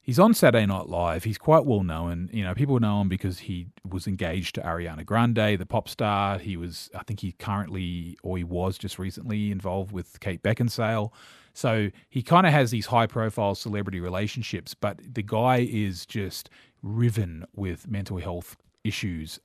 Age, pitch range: 30-49, 95-115 Hz